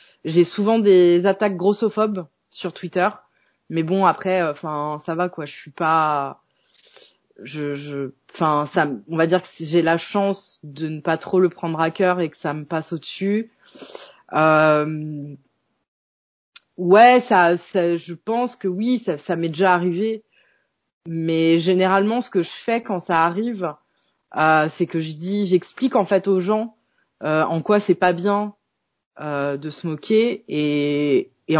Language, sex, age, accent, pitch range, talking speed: French, female, 20-39, French, 160-200 Hz, 165 wpm